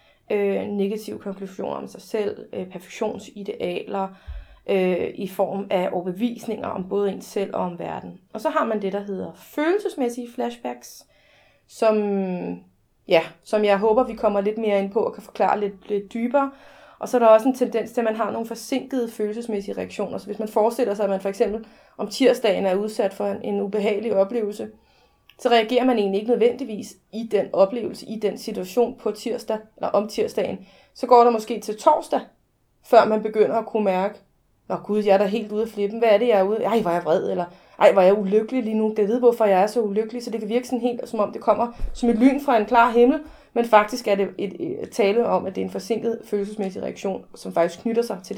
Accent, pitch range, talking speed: native, 200-235 Hz, 220 wpm